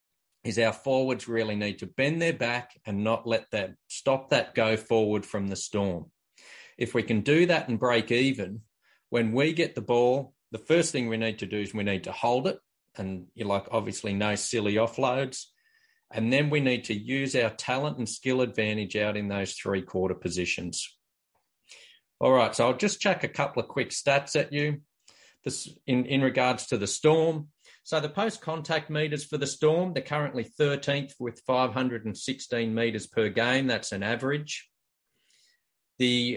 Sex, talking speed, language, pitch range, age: male, 180 wpm, English, 110-145 Hz, 40-59